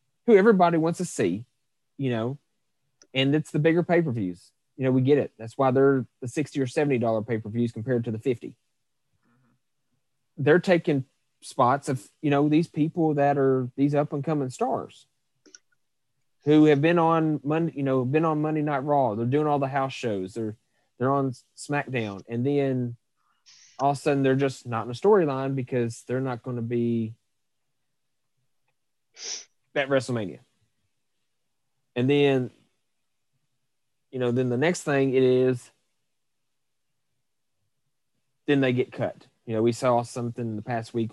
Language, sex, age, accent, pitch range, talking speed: English, male, 30-49, American, 120-145 Hz, 160 wpm